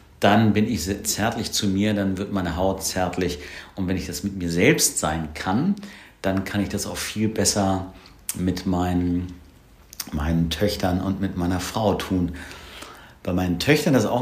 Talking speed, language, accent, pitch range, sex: 175 wpm, German, German, 90-115 Hz, male